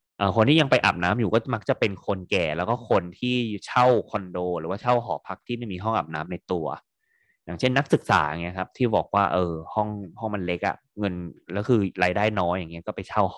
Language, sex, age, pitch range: Thai, male, 20-39, 90-125 Hz